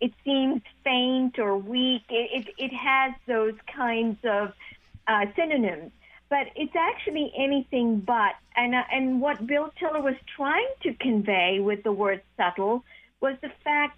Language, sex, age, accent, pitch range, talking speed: English, female, 50-69, American, 220-285 Hz, 155 wpm